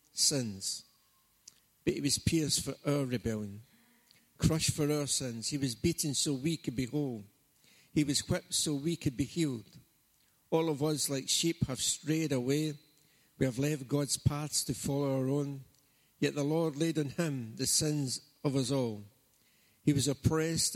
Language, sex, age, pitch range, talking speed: English, male, 60-79, 125-150 Hz, 170 wpm